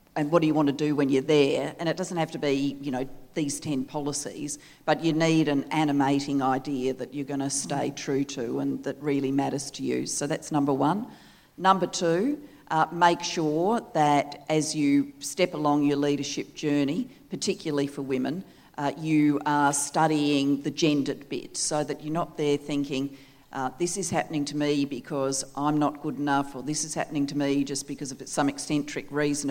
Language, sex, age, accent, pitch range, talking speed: English, female, 40-59, Australian, 140-155 Hz, 195 wpm